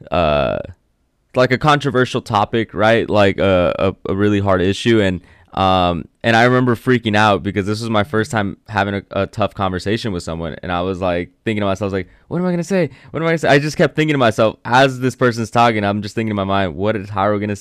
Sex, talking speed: male, 250 wpm